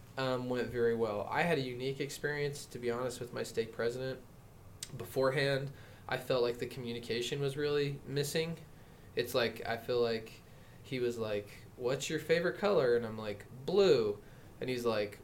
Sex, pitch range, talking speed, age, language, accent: male, 120-150 Hz, 175 wpm, 20-39, English, American